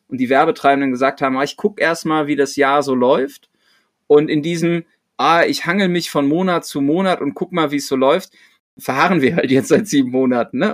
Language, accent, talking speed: German, German, 225 wpm